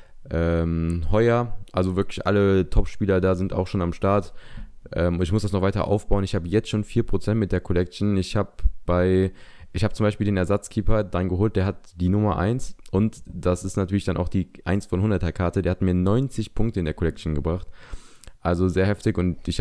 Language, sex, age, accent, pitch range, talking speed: German, male, 20-39, German, 85-105 Hz, 200 wpm